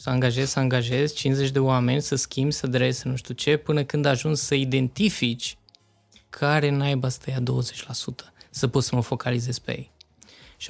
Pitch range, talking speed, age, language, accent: 125-165 Hz, 180 wpm, 20-39, Romanian, native